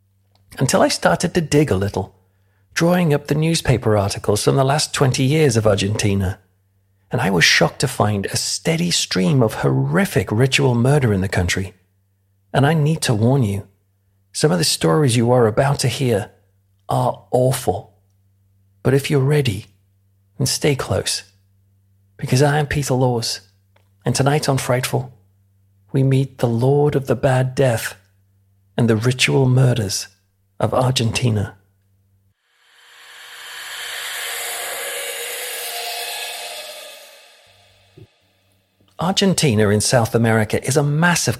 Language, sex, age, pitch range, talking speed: English, male, 40-59, 95-135 Hz, 130 wpm